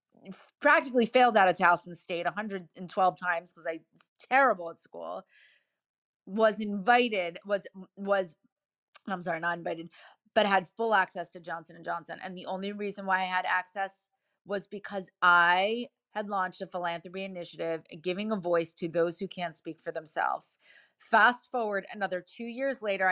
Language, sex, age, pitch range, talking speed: English, female, 30-49, 175-215 Hz, 160 wpm